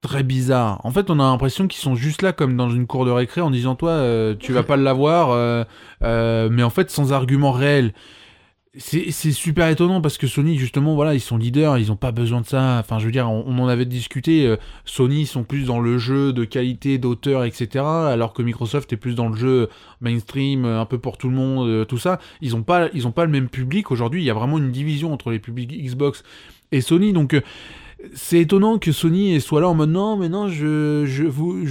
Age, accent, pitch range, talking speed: 20-39, French, 125-155 Hz, 235 wpm